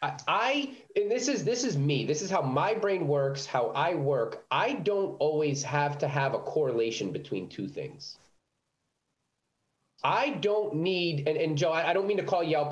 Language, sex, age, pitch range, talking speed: English, male, 30-49, 145-205 Hz, 190 wpm